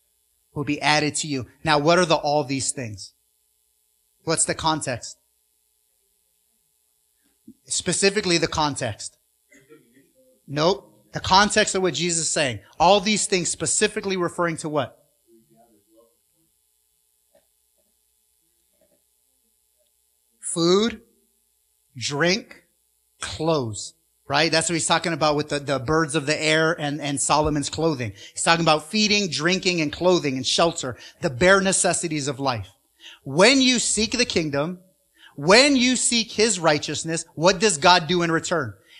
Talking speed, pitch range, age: 130 wpm, 140-195 Hz, 30-49